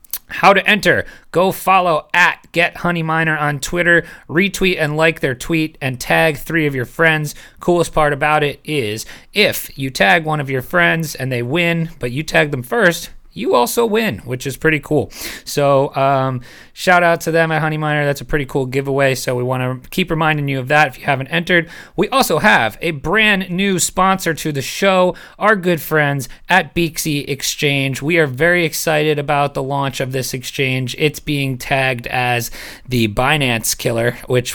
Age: 30-49